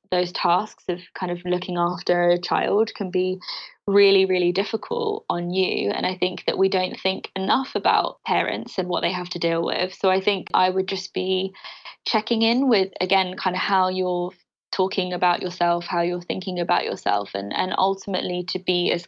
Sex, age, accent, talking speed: female, 20-39, British, 195 wpm